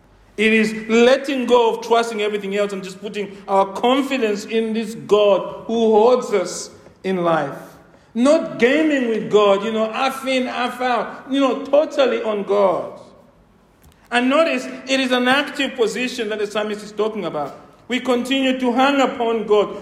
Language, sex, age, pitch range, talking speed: English, male, 50-69, 210-270 Hz, 165 wpm